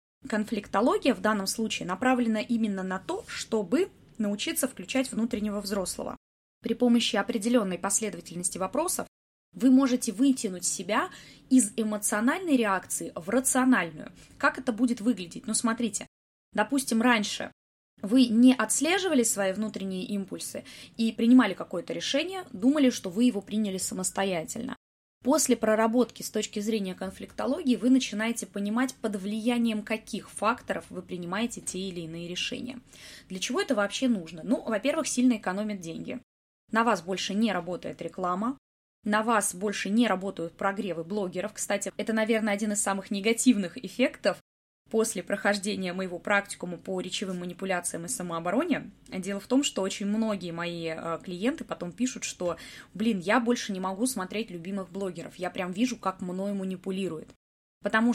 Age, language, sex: 20-39, Russian, female